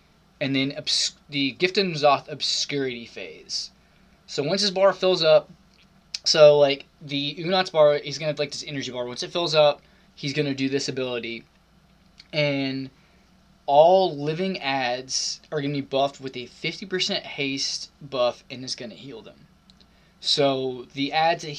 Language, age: English, 20-39